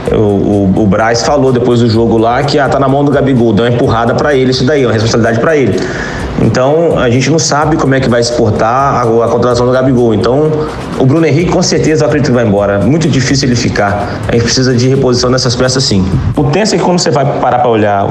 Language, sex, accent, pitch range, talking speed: Portuguese, male, Brazilian, 115-150 Hz, 250 wpm